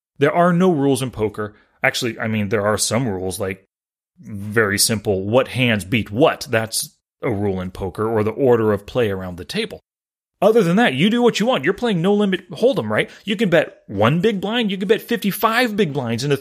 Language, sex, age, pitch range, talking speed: English, male, 30-49, 110-175 Hz, 225 wpm